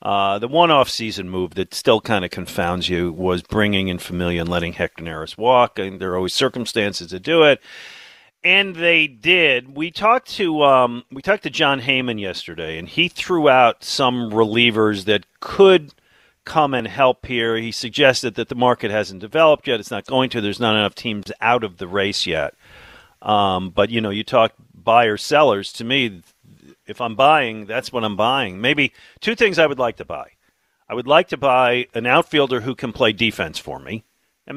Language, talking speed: English, 195 wpm